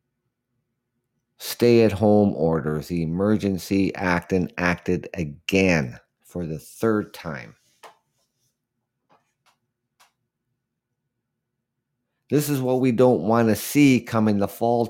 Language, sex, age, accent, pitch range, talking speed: English, male, 50-69, American, 95-125 Hz, 95 wpm